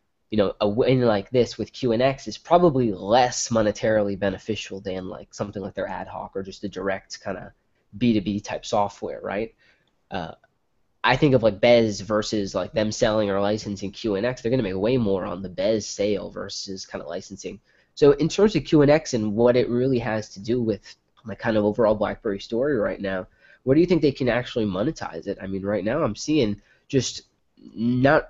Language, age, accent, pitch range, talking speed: English, 20-39, American, 100-120 Hz, 200 wpm